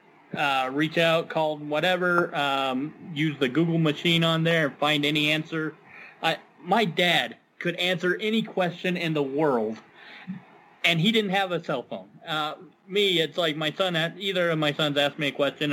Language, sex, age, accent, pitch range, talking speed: English, male, 30-49, American, 140-170 Hz, 185 wpm